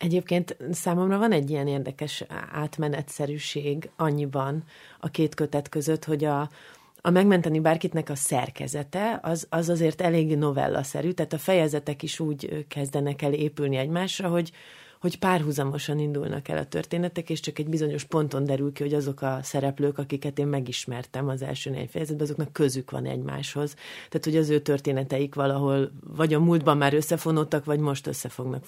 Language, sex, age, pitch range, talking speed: Hungarian, female, 30-49, 140-160 Hz, 160 wpm